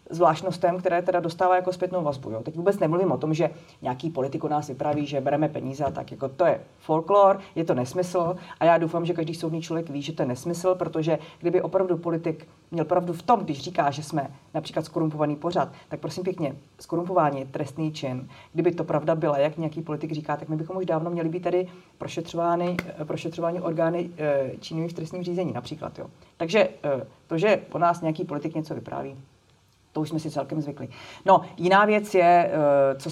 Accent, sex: native, female